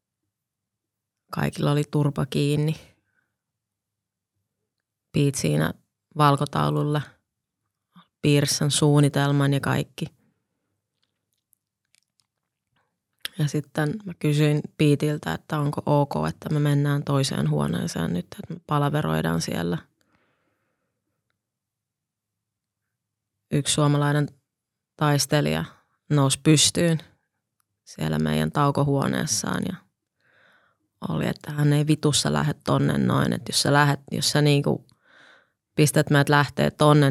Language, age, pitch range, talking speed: Finnish, 20-39, 105-150 Hz, 95 wpm